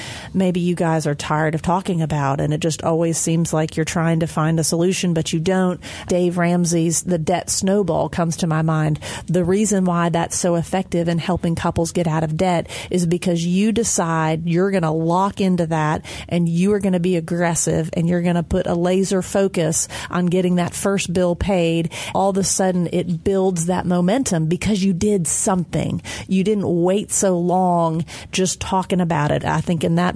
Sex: female